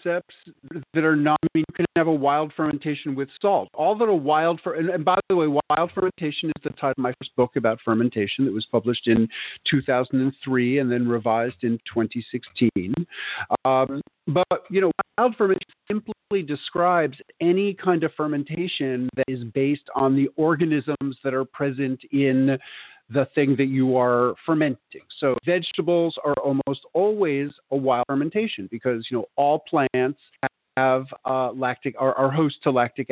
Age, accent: 50-69, American